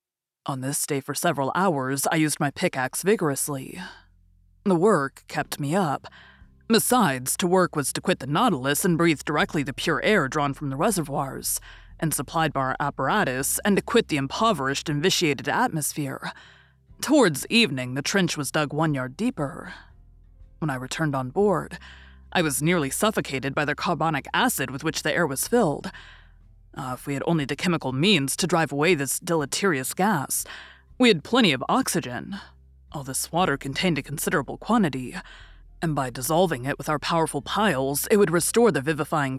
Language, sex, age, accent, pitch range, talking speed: English, female, 20-39, American, 135-180 Hz, 175 wpm